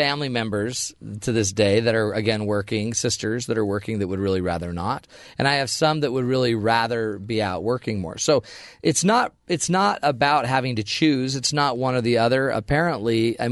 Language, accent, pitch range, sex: English, American, 105-135 Hz, male